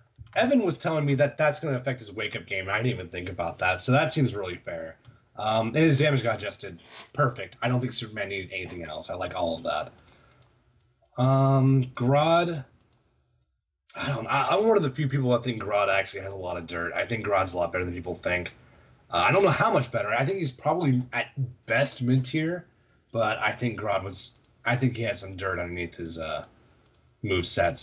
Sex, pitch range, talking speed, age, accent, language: male, 100-135 Hz, 220 wpm, 30-49, American, English